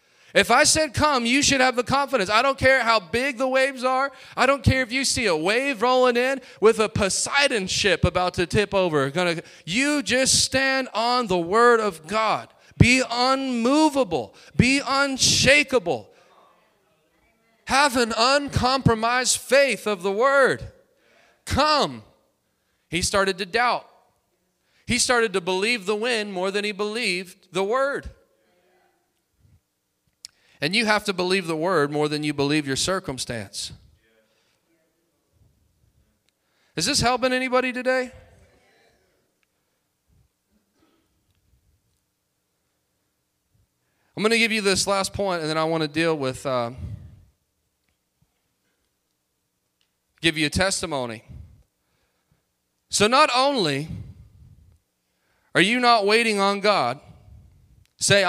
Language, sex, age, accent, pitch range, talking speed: English, male, 30-49, American, 155-255 Hz, 120 wpm